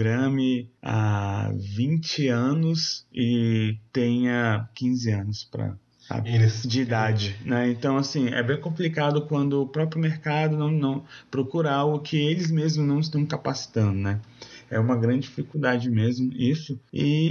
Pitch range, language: 115-155 Hz, Portuguese